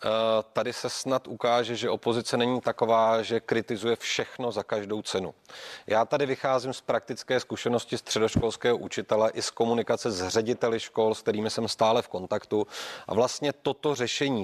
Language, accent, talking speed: Czech, native, 160 wpm